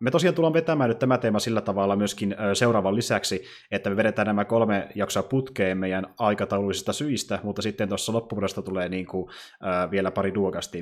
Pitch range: 95-115 Hz